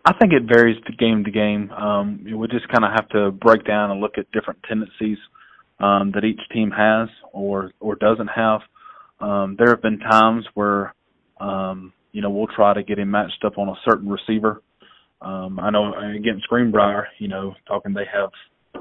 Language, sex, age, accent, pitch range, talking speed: English, male, 20-39, American, 100-110 Hz, 195 wpm